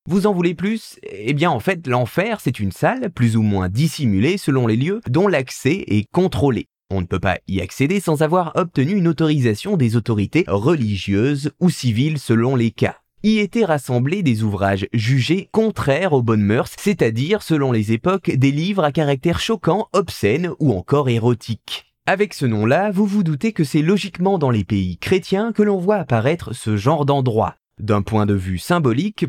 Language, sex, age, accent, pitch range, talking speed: French, male, 20-39, French, 120-185 Hz, 185 wpm